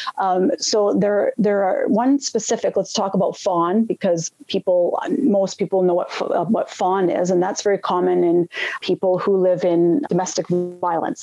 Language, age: English, 30-49